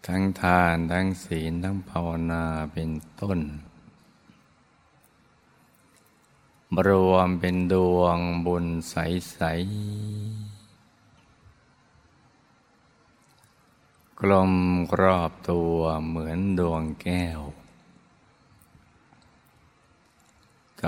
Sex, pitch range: male, 85-95 Hz